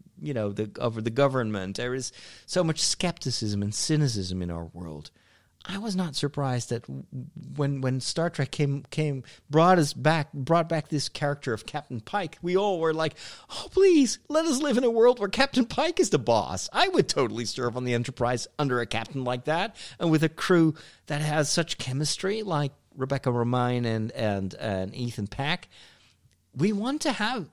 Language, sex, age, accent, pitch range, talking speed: English, male, 40-59, American, 105-160 Hz, 190 wpm